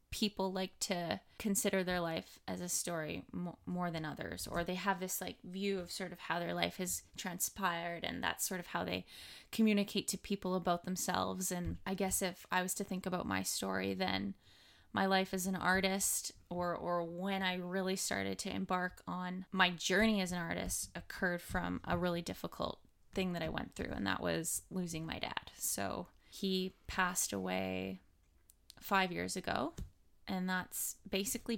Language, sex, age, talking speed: English, female, 10-29, 180 wpm